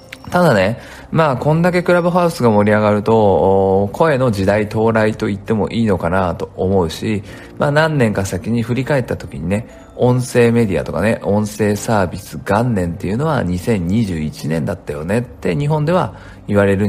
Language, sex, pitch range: Japanese, male, 90-120 Hz